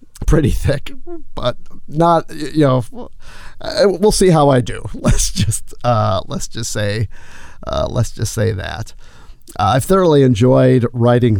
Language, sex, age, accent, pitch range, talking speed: English, male, 50-69, American, 105-125 Hz, 140 wpm